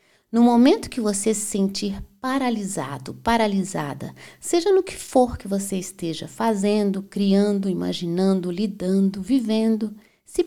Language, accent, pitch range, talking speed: Portuguese, Brazilian, 170-220 Hz, 120 wpm